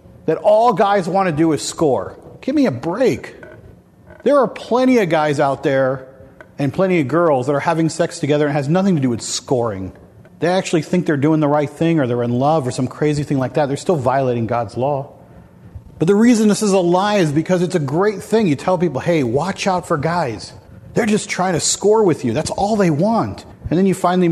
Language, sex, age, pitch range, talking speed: English, male, 40-59, 125-180 Hz, 235 wpm